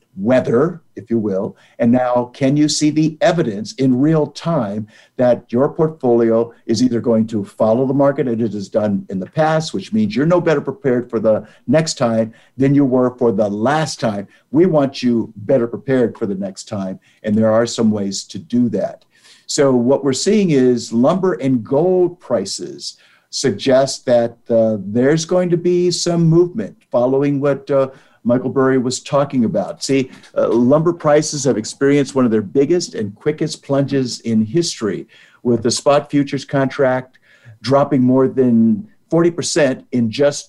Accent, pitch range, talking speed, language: American, 115-150 Hz, 175 wpm, English